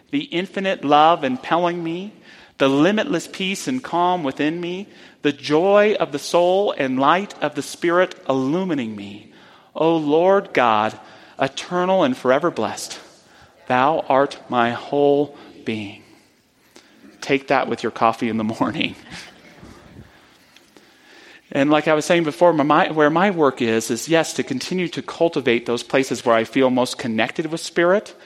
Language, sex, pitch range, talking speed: English, male, 120-165 Hz, 145 wpm